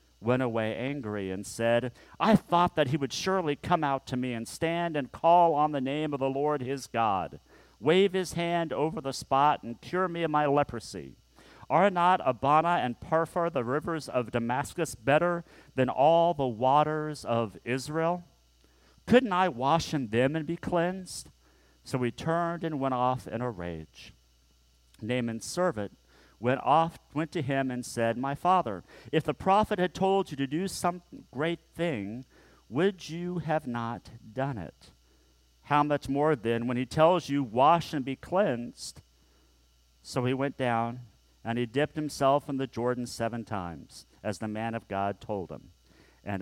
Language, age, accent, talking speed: English, 40-59, American, 170 wpm